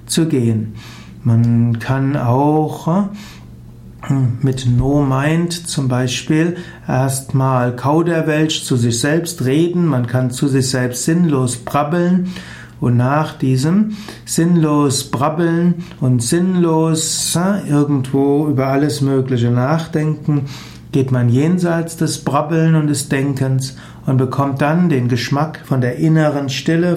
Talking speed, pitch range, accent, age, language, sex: 115 wpm, 130-160 Hz, German, 60-79, German, male